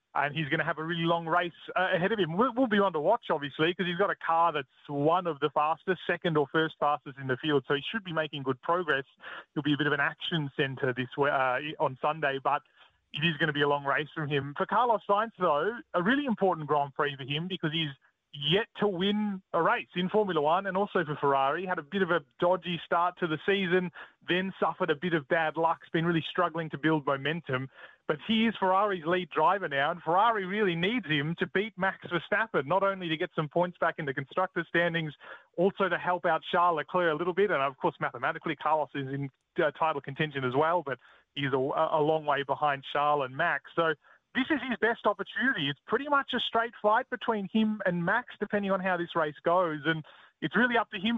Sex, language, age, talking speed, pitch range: male, English, 20-39, 235 wpm, 150-190 Hz